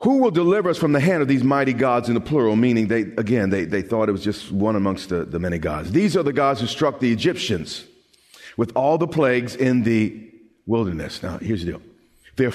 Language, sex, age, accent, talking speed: English, male, 40-59, American, 235 wpm